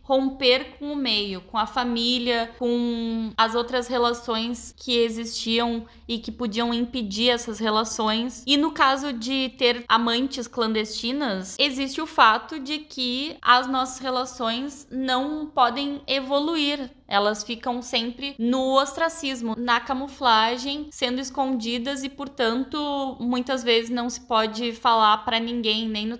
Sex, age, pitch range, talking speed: female, 10-29, 225-265 Hz, 135 wpm